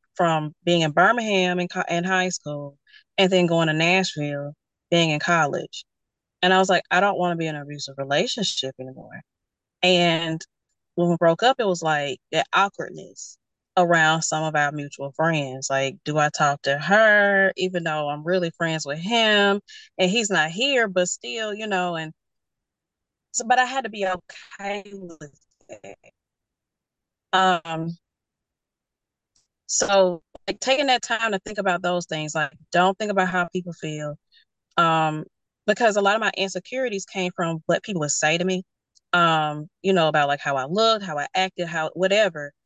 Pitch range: 155-195 Hz